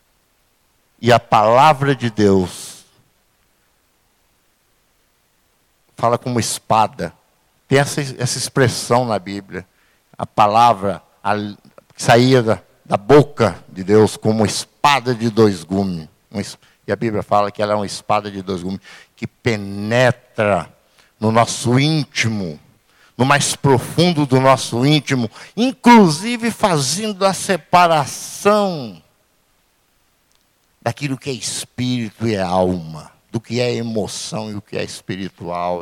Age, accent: 60-79, Brazilian